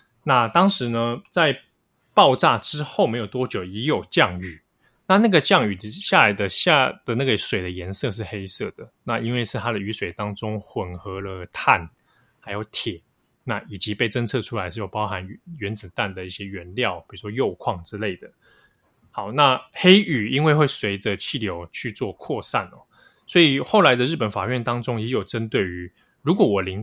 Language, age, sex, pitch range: Chinese, 20-39, male, 100-140 Hz